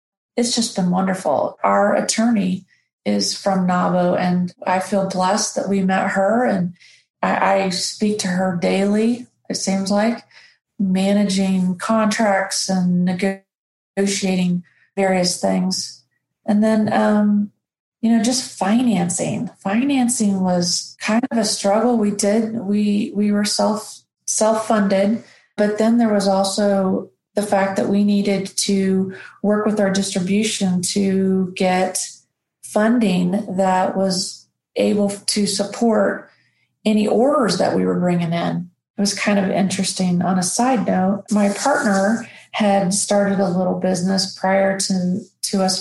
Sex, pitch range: female, 185-210 Hz